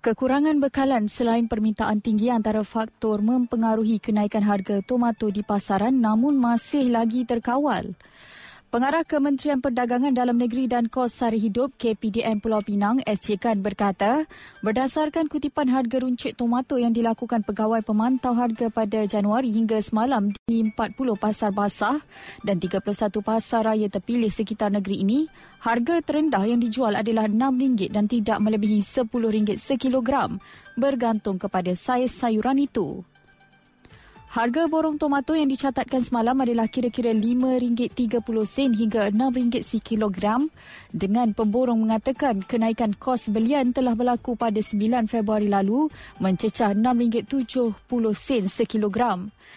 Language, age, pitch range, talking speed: Malay, 20-39, 215-255 Hz, 120 wpm